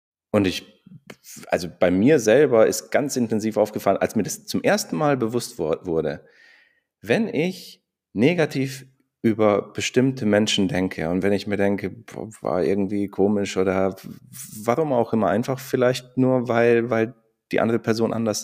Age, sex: 40-59, male